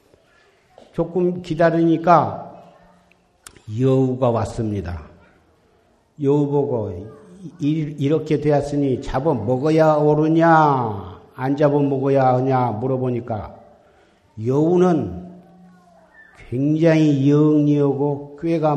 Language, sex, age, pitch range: Korean, male, 50-69, 130-165 Hz